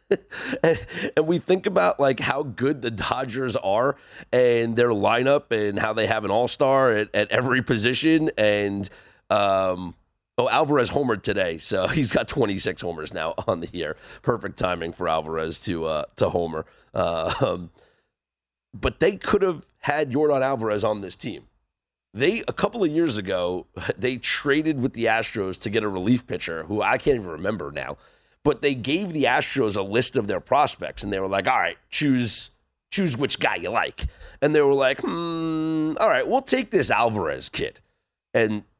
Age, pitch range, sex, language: 30-49, 95-140 Hz, male, English